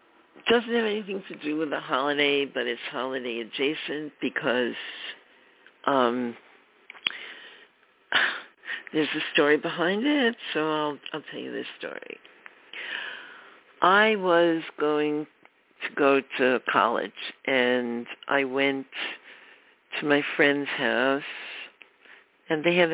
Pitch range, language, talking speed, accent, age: 135-175 Hz, English, 110 wpm, American, 60-79